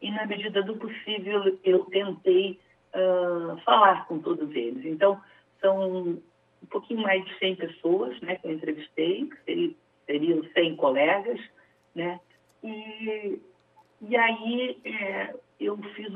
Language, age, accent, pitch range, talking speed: Portuguese, 60-79, Brazilian, 175-255 Hz, 130 wpm